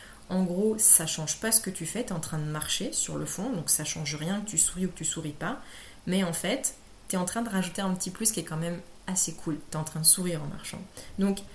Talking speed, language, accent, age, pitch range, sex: 300 wpm, French, French, 30-49, 165-195 Hz, female